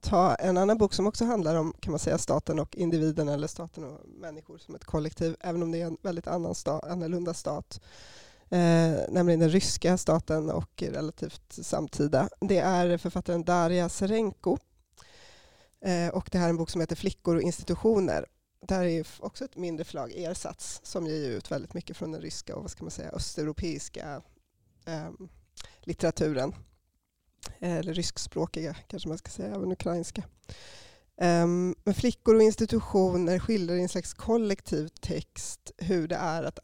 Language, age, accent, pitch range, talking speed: Swedish, 20-39, native, 160-185 Hz, 165 wpm